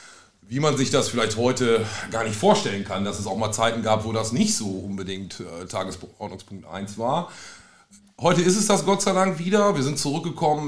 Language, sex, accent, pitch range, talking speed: German, male, German, 105-135 Hz, 195 wpm